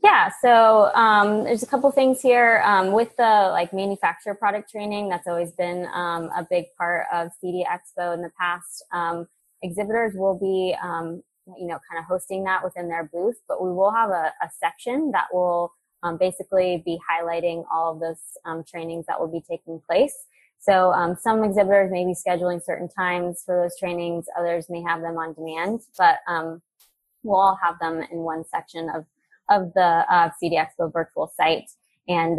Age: 20-39